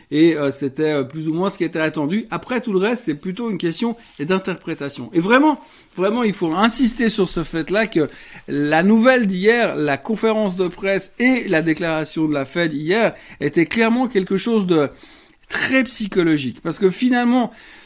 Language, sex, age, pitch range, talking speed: French, male, 50-69, 160-210 Hz, 175 wpm